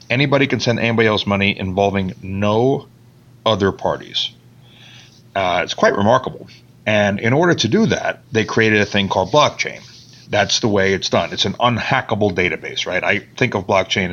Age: 40-59